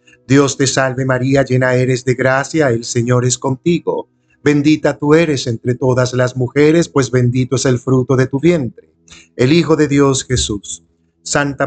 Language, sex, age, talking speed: Spanish, male, 50-69, 170 wpm